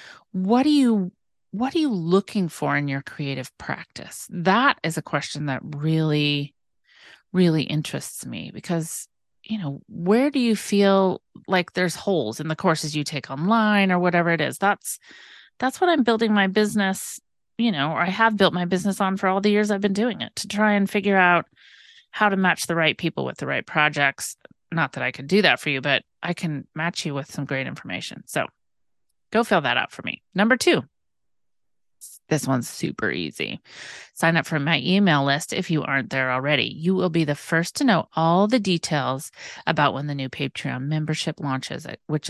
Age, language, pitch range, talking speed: 30-49, English, 150-205 Hz, 195 wpm